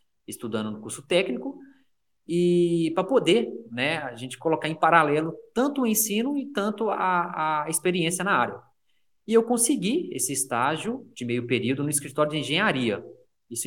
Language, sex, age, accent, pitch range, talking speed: Portuguese, male, 20-39, Brazilian, 130-195 Hz, 160 wpm